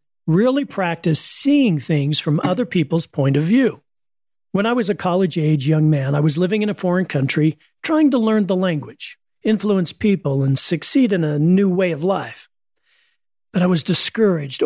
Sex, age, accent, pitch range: male, 40-59, American, 155-200 Hz